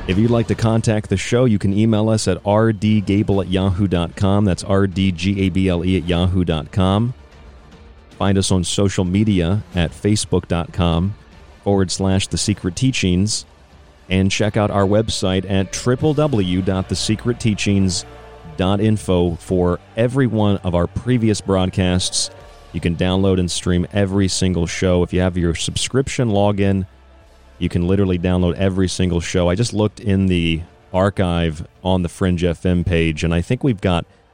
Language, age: English, 40-59